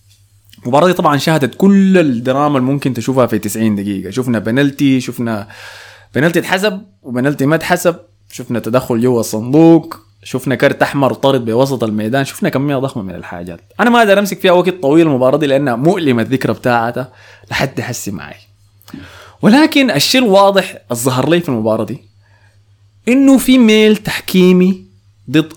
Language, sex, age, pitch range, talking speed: Arabic, male, 20-39, 105-175 Hz, 145 wpm